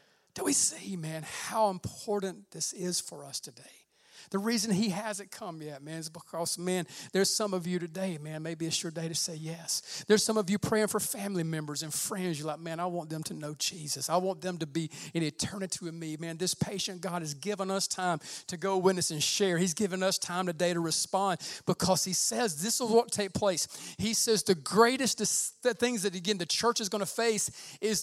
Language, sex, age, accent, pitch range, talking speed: English, male, 40-59, American, 175-215 Hz, 230 wpm